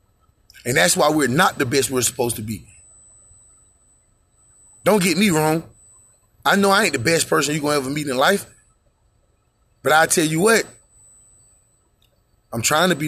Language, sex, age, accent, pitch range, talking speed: English, male, 30-49, American, 105-170 Hz, 175 wpm